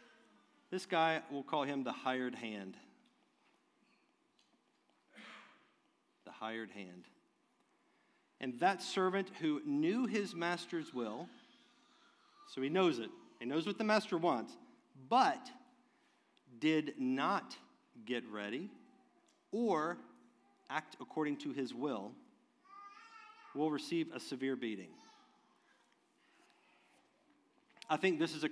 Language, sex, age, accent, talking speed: English, male, 50-69, American, 105 wpm